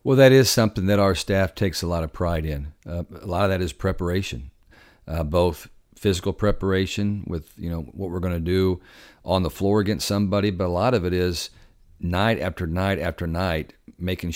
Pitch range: 85-100 Hz